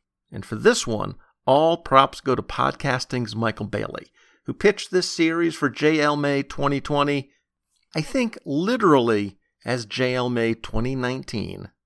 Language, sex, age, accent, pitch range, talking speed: English, male, 50-69, American, 120-160 Hz, 130 wpm